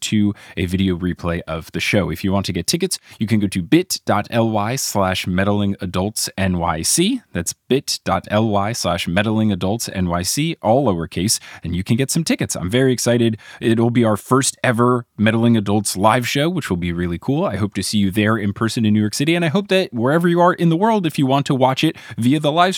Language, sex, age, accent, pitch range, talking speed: English, male, 20-39, American, 95-145 Hz, 220 wpm